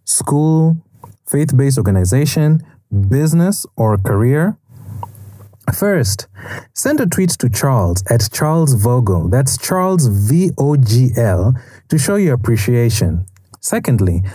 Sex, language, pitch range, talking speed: male, English, 115-160 Hz, 95 wpm